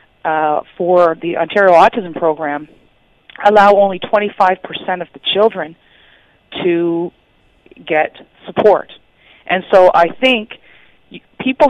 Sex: female